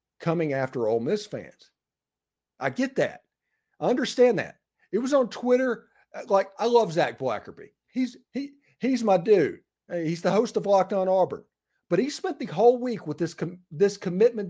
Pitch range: 170-235 Hz